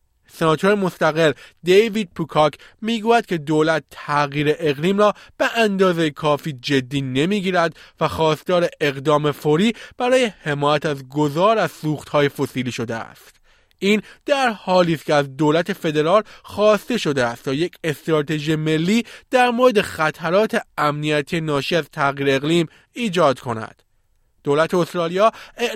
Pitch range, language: 140-185 Hz, Persian